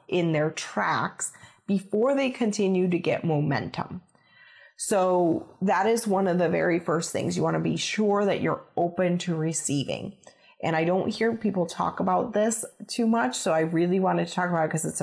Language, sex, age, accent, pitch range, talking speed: English, female, 30-49, American, 160-195 Hz, 190 wpm